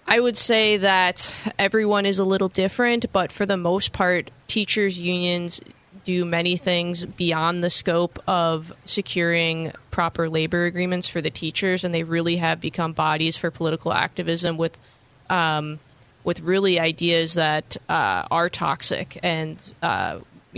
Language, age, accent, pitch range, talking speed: English, 20-39, American, 160-180 Hz, 145 wpm